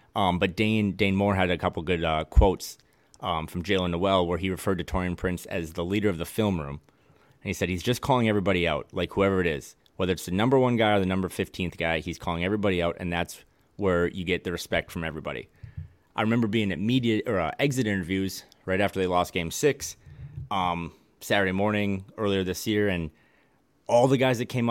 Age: 30-49